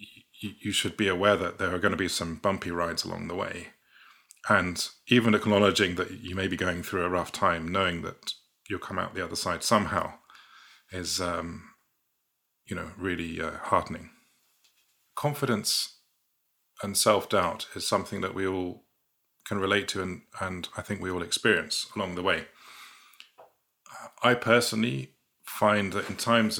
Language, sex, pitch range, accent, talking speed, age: English, male, 90-105 Hz, British, 160 wpm, 30-49